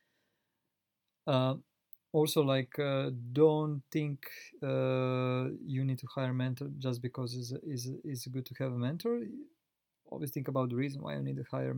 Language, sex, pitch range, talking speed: English, male, 125-145 Hz, 175 wpm